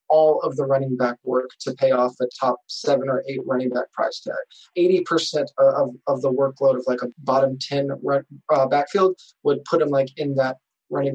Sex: male